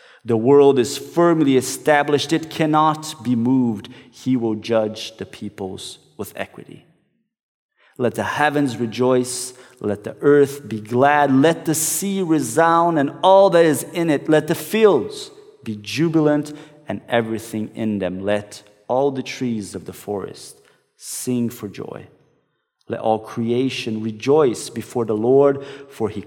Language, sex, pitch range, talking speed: English, male, 110-150 Hz, 145 wpm